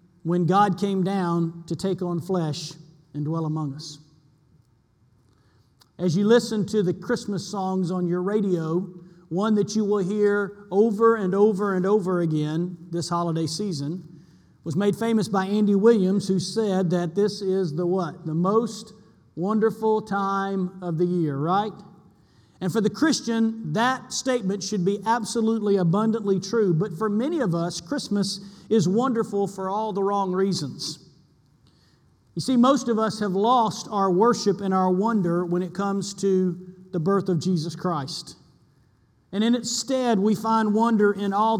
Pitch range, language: 175-215 Hz, English